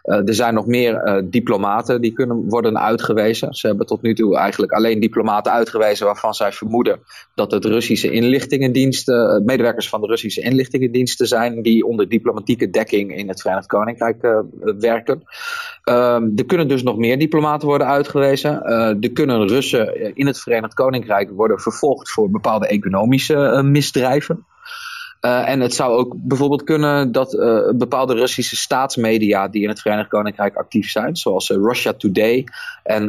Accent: Dutch